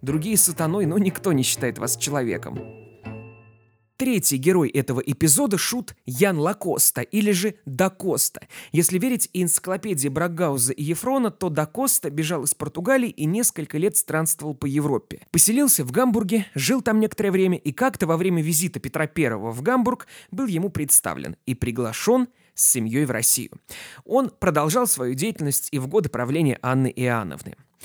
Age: 20-39